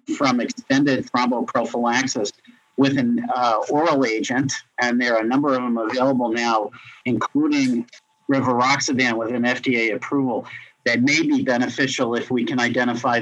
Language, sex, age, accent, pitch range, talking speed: English, male, 50-69, American, 125-170 Hz, 140 wpm